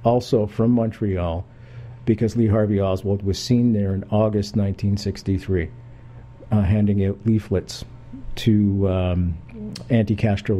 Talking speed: 110 wpm